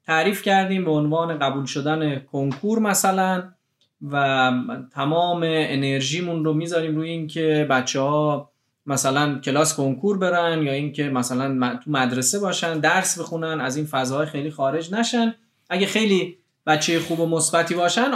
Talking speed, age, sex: 135 wpm, 20-39, male